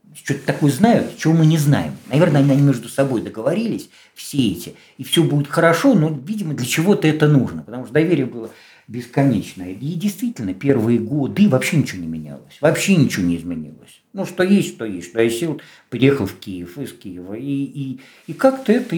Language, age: Russian, 50-69